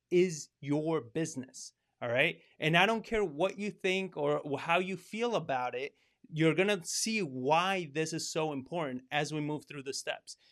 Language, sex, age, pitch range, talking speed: English, male, 30-49, 145-185 Hz, 190 wpm